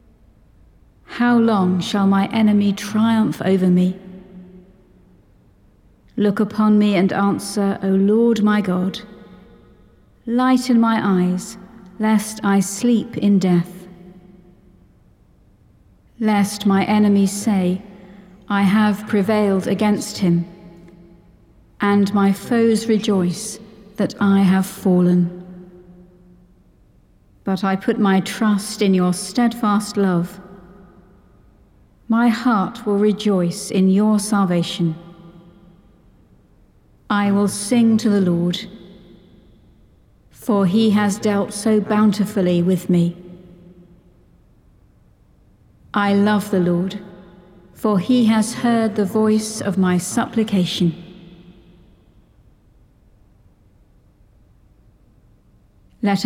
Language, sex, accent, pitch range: English, female, British, 180-210 Hz